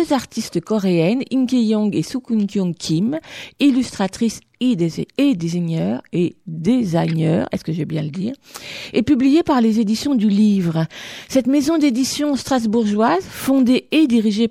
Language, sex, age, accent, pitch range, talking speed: French, female, 50-69, French, 180-255 Hz, 145 wpm